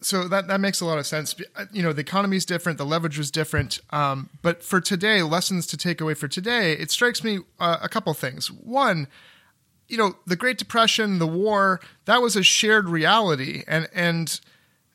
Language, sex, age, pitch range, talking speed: English, male, 30-49, 155-200 Hz, 200 wpm